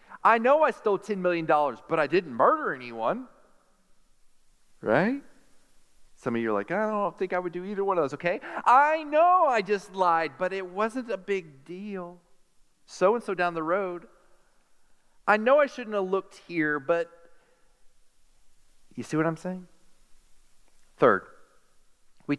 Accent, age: American, 40-59